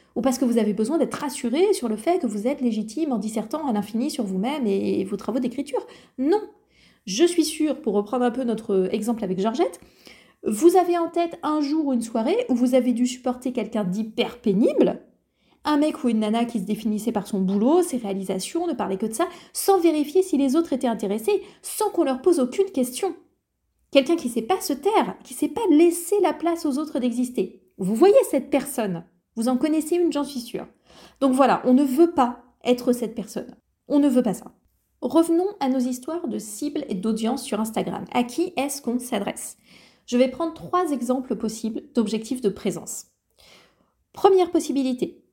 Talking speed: 205 wpm